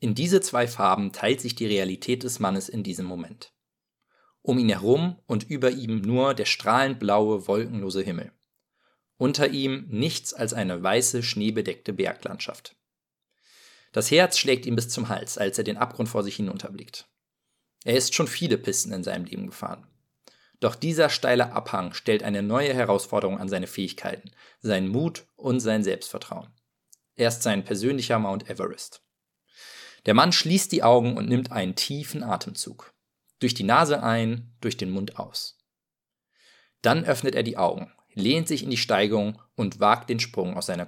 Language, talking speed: German, 165 wpm